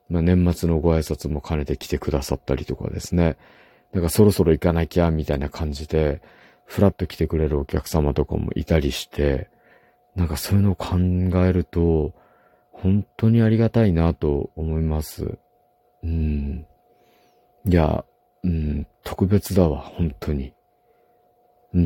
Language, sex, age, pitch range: Japanese, male, 50-69, 75-95 Hz